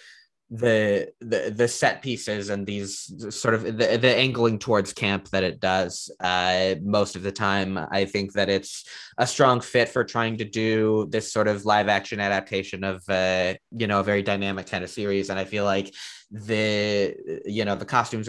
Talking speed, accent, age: 190 wpm, American, 20-39